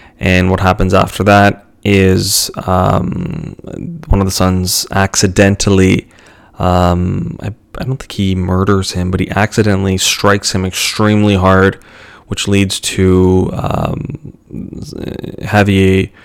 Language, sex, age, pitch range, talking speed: English, male, 20-39, 95-105 Hz, 120 wpm